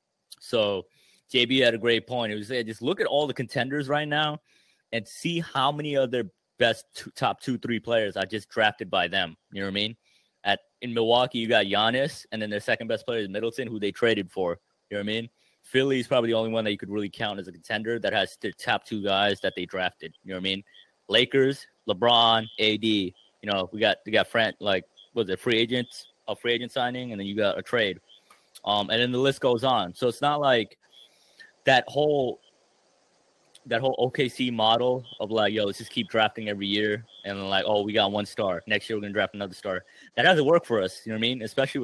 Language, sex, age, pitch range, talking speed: English, male, 30-49, 105-125 Hz, 240 wpm